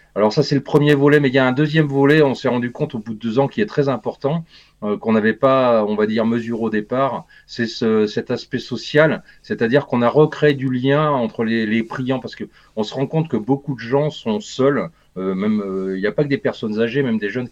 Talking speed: 265 wpm